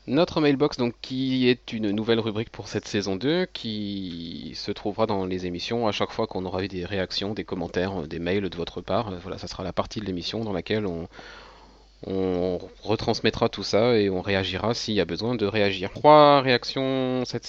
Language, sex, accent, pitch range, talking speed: French, male, French, 95-115 Hz, 200 wpm